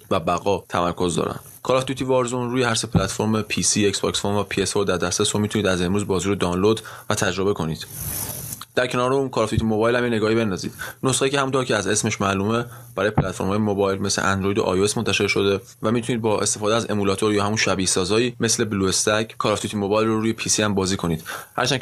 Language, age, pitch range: Persian, 20-39, 95-115 Hz